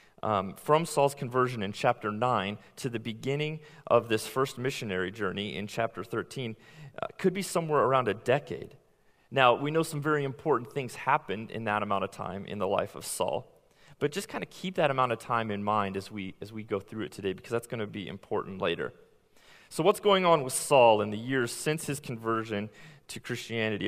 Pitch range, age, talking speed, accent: 110-145 Hz, 30-49, 205 wpm, American